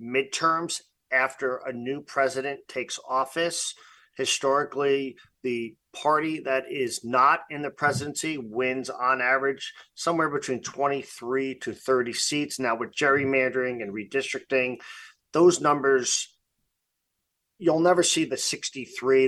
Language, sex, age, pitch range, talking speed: English, male, 40-59, 125-150 Hz, 115 wpm